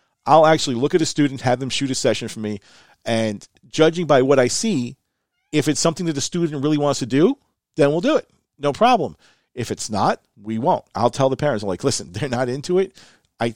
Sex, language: male, English